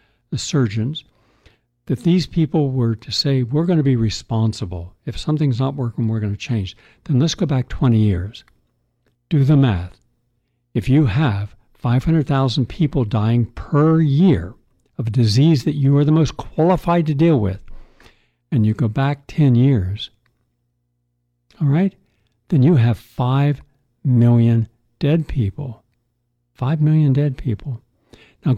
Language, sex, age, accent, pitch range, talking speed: English, male, 60-79, American, 115-145 Hz, 145 wpm